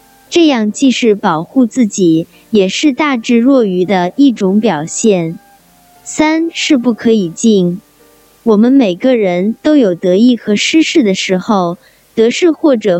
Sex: male